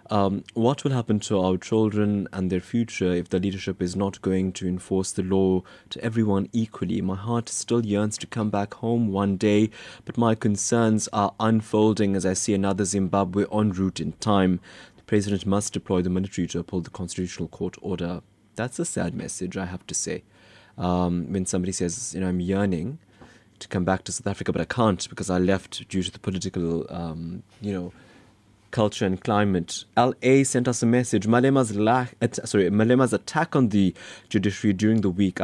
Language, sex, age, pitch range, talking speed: English, male, 20-39, 95-110 Hz, 195 wpm